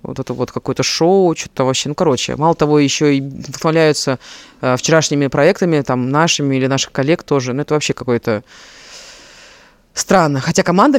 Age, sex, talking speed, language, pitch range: 20-39, female, 165 wpm, Russian, 135-175 Hz